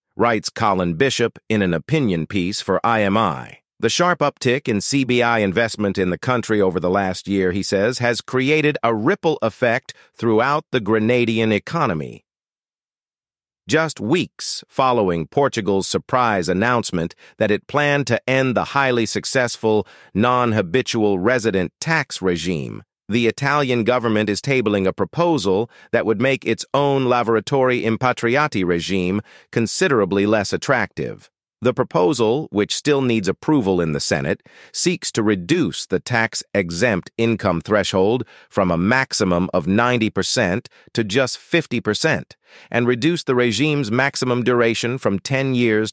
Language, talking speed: English, 135 wpm